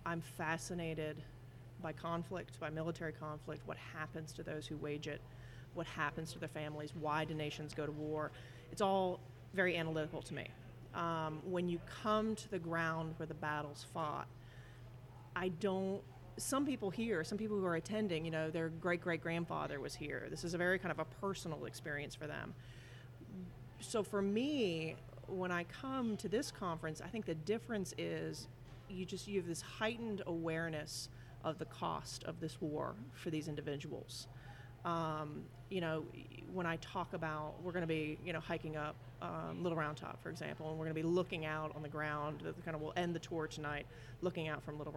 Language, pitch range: English, 145-175 Hz